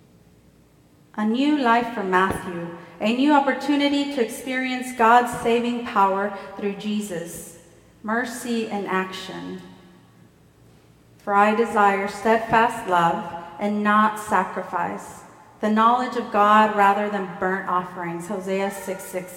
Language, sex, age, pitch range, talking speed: English, female, 30-49, 185-245 Hz, 110 wpm